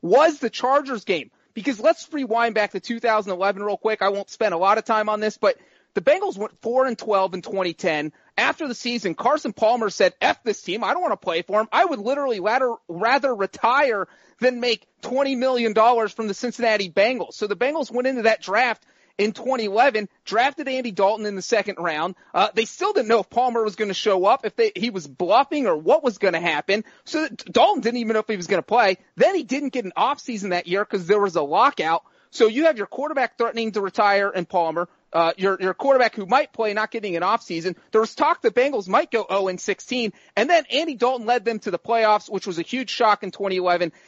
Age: 30-49